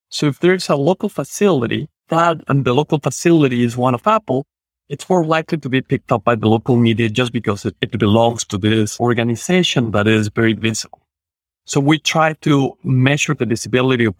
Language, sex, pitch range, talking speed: English, male, 110-140 Hz, 195 wpm